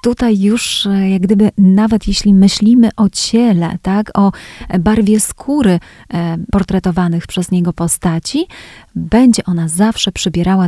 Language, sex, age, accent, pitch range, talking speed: Polish, female, 30-49, native, 175-215 Hz, 110 wpm